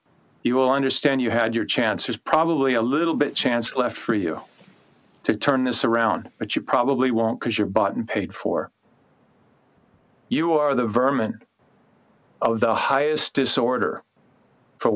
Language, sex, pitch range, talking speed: English, male, 115-145 Hz, 155 wpm